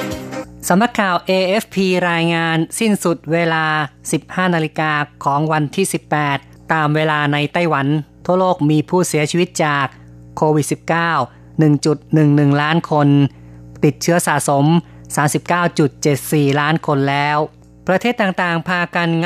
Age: 20-39